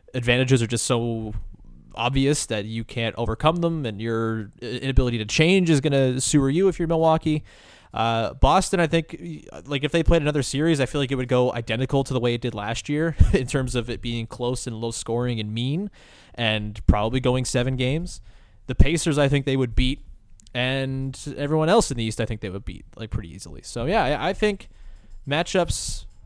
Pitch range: 110-140 Hz